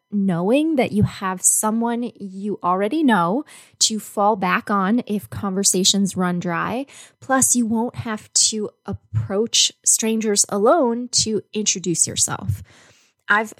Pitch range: 185-230 Hz